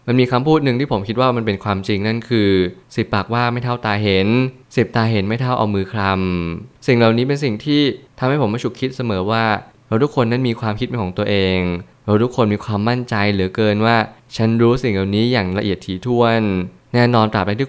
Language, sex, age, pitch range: Thai, male, 20-39, 100-120 Hz